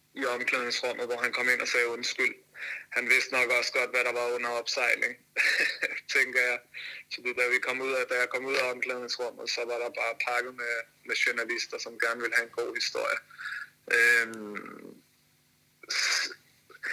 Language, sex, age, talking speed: Danish, male, 20-39, 180 wpm